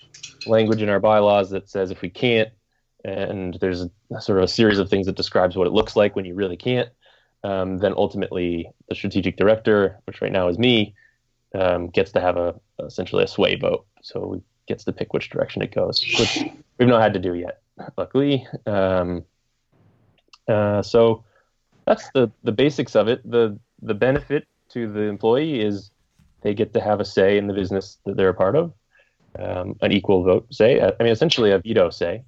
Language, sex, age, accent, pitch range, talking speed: English, male, 20-39, American, 95-120 Hz, 195 wpm